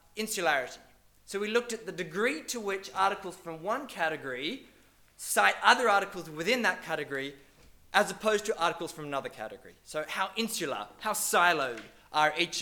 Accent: Australian